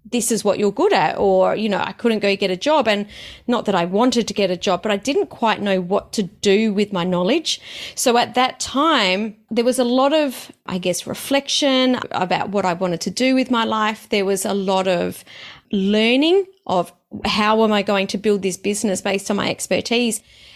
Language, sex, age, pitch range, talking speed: English, female, 30-49, 195-240 Hz, 220 wpm